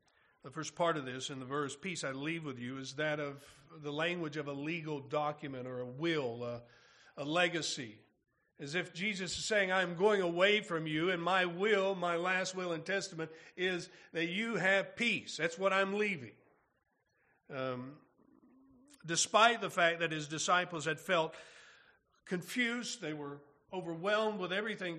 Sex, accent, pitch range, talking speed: male, American, 160-205 Hz, 170 wpm